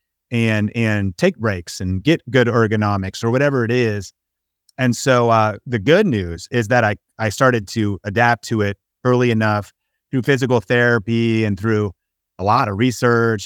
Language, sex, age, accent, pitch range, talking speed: French, male, 30-49, American, 100-120 Hz, 170 wpm